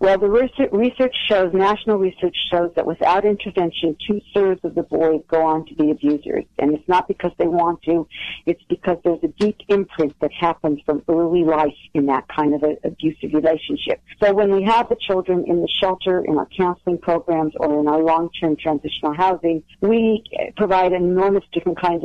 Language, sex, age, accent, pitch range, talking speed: English, female, 50-69, American, 160-185 Hz, 185 wpm